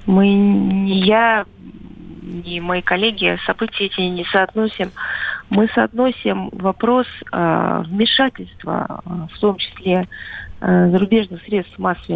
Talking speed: 110 wpm